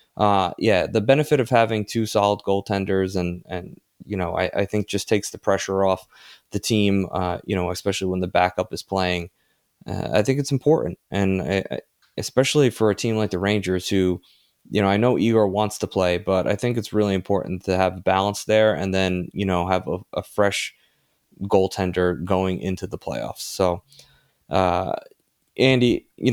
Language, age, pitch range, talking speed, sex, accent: English, 20-39, 95-110 Hz, 185 wpm, male, American